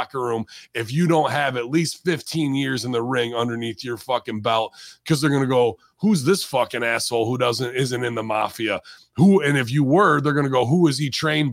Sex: male